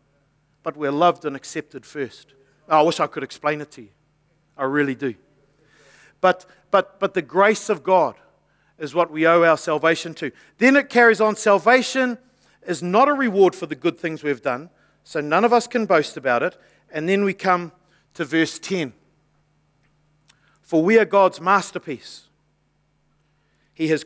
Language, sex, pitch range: English, male, 155-205 Hz